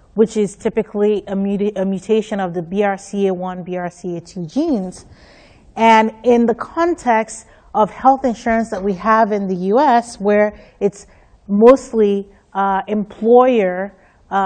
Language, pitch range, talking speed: English, 185-230 Hz, 125 wpm